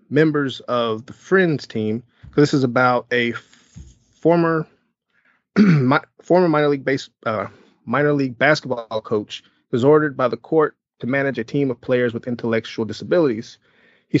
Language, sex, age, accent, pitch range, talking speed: English, male, 30-49, American, 115-150 Hz, 155 wpm